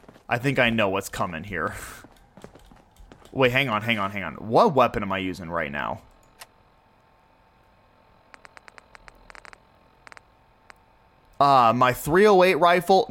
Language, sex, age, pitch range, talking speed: English, male, 30-49, 105-175 Hz, 115 wpm